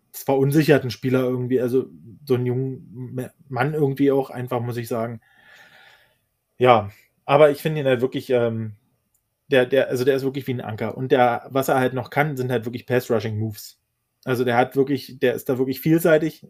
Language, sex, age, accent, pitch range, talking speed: German, male, 20-39, German, 120-135 Hz, 185 wpm